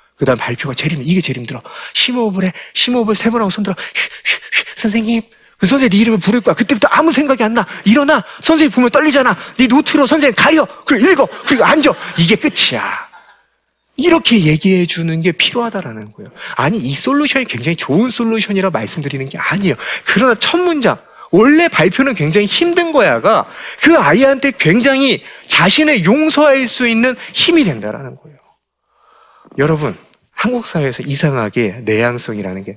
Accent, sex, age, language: native, male, 40-59, Korean